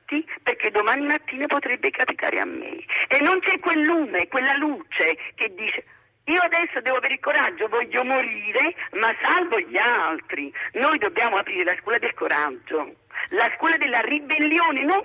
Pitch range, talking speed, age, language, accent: 255-345 Hz, 160 wpm, 50-69, Italian, native